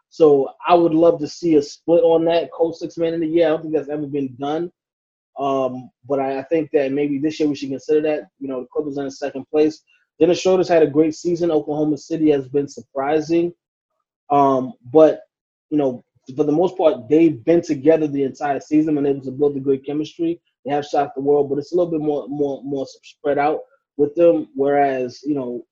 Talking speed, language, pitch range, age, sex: 230 wpm, English, 140-160 Hz, 20-39, male